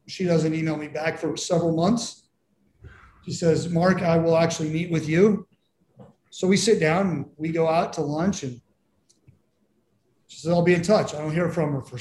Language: English